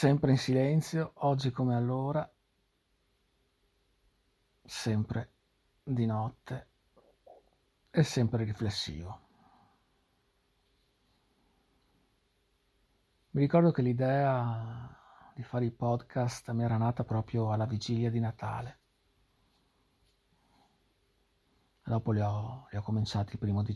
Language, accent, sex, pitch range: Italian, native, male, 115-150 Hz